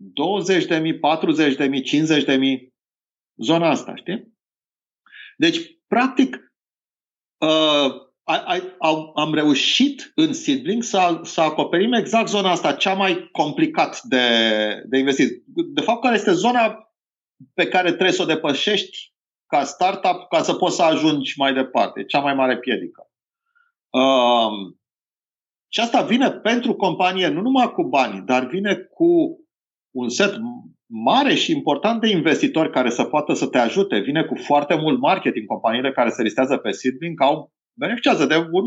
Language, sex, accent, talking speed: Romanian, male, native, 145 wpm